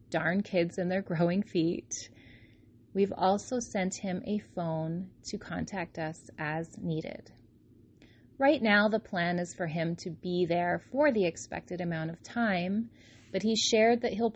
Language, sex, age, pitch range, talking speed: English, female, 30-49, 160-210 Hz, 160 wpm